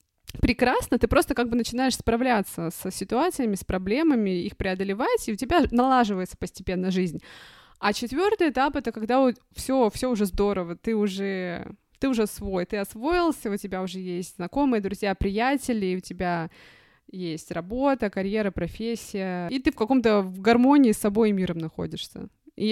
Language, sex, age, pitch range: Russian, female, 20-39, 195-245 Hz